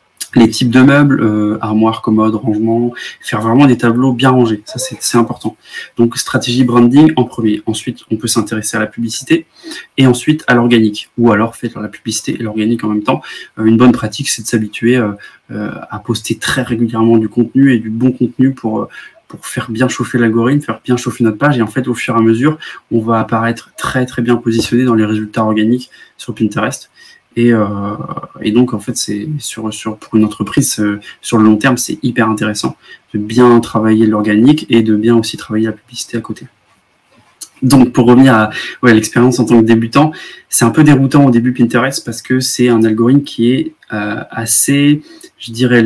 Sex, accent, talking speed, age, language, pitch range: male, French, 205 wpm, 20-39, French, 110-130 Hz